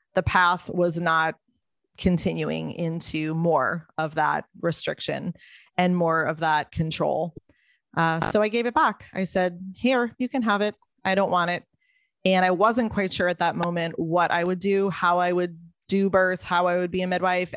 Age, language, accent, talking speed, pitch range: 20-39, English, American, 190 wpm, 165-195 Hz